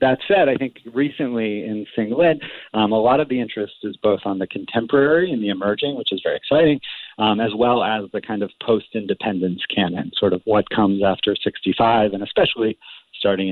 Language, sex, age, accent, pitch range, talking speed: English, male, 40-59, American, 100-125 Hz, 195 wpm